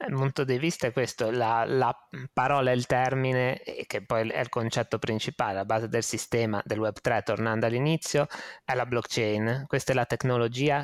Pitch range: 110-130 Hz